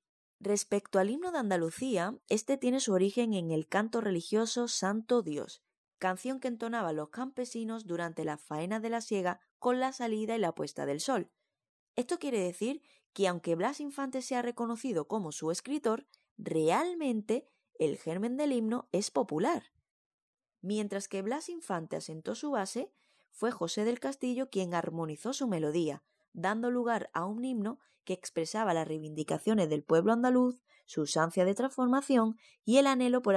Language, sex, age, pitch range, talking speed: Spanish, female, 20-39, 175-250 Hz, 160 wpm